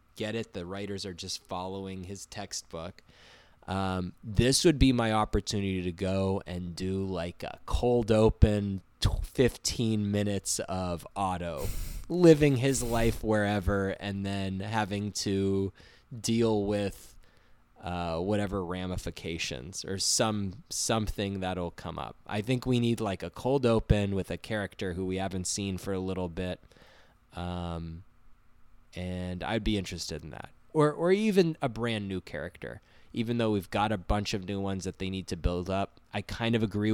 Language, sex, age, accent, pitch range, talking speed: English, male, 20-39, American, 90-110 Hz, 160 wpm